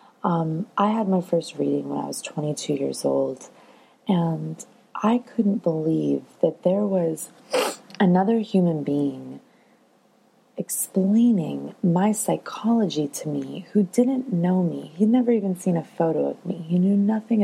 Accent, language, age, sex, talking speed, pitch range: American, English, 20-39, female, 145 wpm, 160-220 Hz